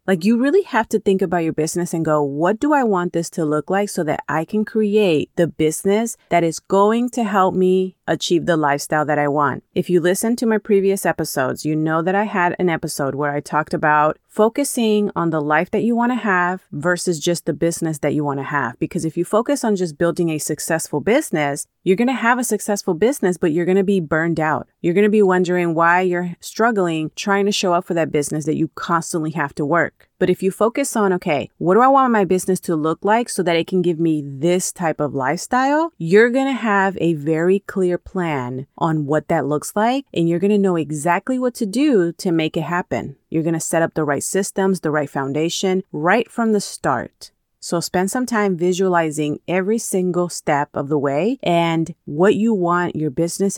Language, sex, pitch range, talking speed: English, female, 160-200 Hz, 225 wpm